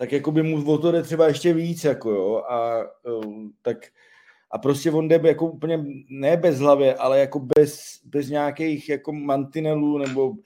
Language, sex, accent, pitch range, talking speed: Czech, male, native, 135-165 Hz, 180 wpm